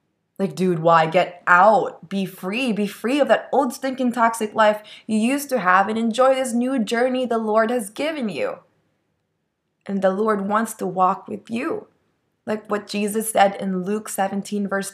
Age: 20-39